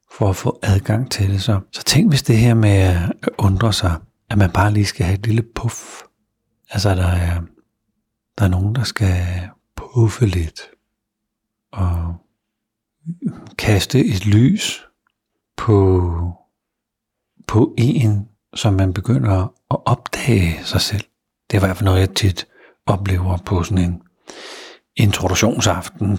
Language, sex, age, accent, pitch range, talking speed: Danish, male, 60-79, native, 95-110 Hz, 140 wpm